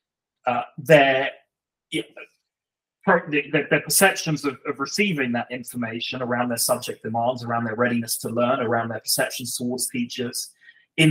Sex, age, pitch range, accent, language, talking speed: male, 30-49, 125-155 Hz, British, English, 130 wpm